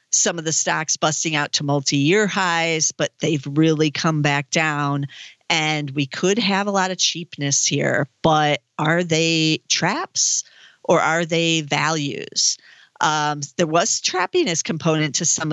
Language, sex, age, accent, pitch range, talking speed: English, female, 50-69, American, 150-190 Hz, 150 wpm